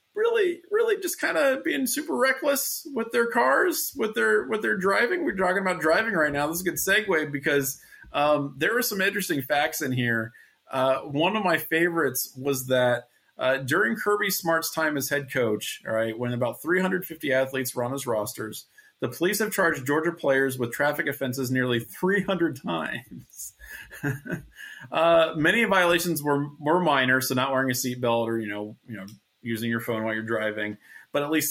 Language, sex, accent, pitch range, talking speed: English, male, American, 120-170 Hz, 185 wpm